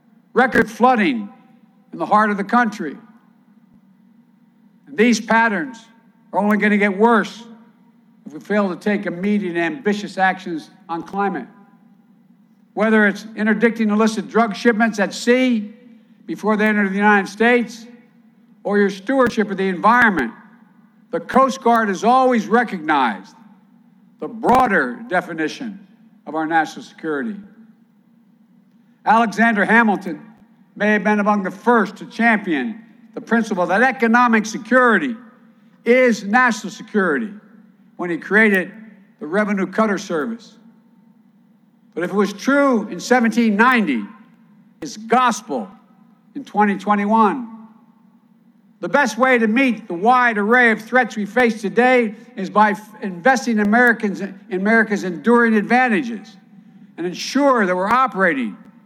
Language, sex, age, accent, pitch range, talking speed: English, male, 60-79, American, 205-230 Hz, 125 wpm